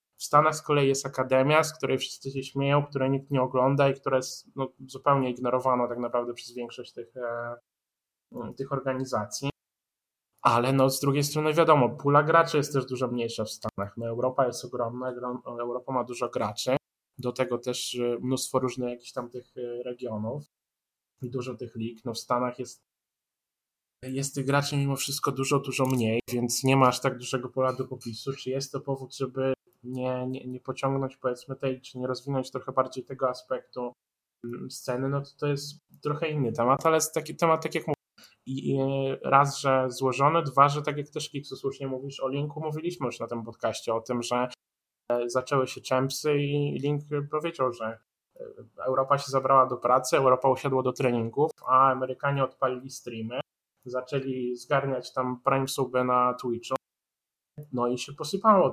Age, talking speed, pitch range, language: 10-29, 175 wpm, 125-140 Hz, Polish